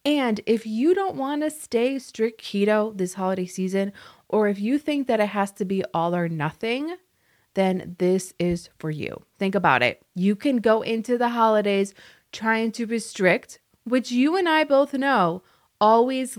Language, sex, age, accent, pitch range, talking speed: English, female, 20-39, American, 185-255 Hz, 175 wpm